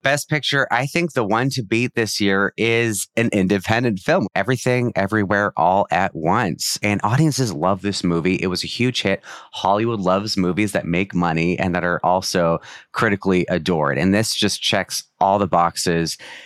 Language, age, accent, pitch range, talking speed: English, 30-49, American, 90-120 Hz, 175 wpm